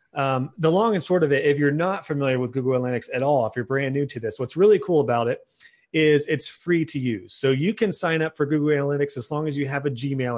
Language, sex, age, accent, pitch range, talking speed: English, male, 30-49, American, 130-160 Hz, 270 wpm